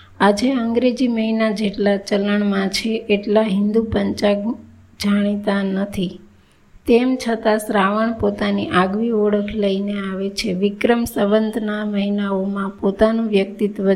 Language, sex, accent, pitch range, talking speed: Gujarati, female, native, 205-225 Hz, 75 wpm